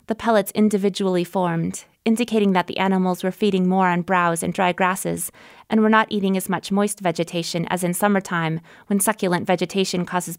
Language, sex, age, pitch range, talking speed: English, female, 20-39, 175-205 Hz, 180 wpm